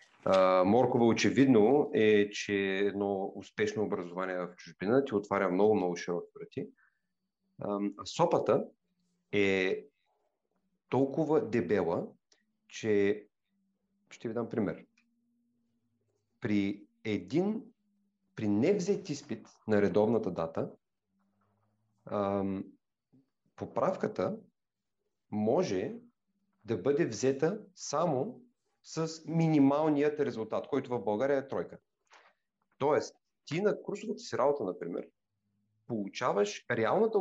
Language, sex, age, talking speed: Bulgarian, male, 40-59, 95 wpm